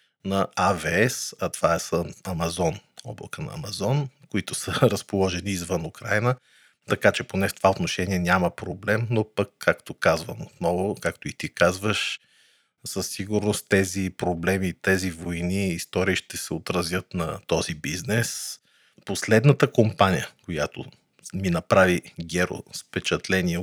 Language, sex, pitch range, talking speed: Bulgarian, male, 95-115 Hz, 130 wpm